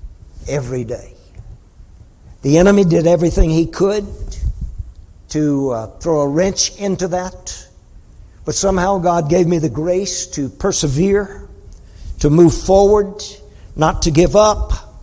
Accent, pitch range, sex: American, 90-150 Hz, male